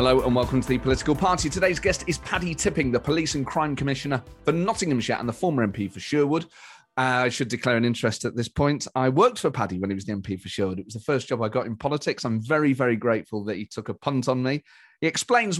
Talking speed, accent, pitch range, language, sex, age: 260 wpm, British, 110-150 Hz, English, male, 30-49